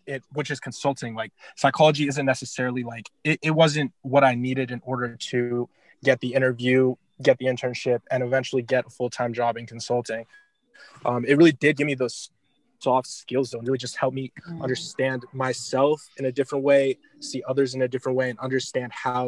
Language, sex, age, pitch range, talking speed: English, male, 20-39, 125-140 Hz, 195 wpm